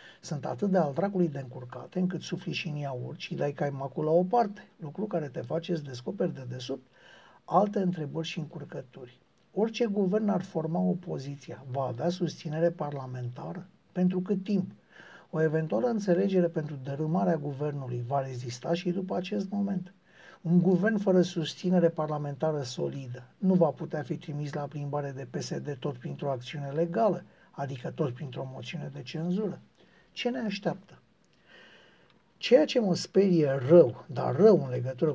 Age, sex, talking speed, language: 60-79, male, 155 wpm, Romanian